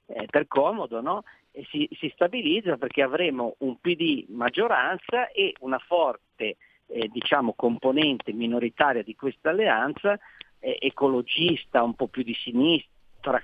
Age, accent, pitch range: 50-69, native, 125-155 Hz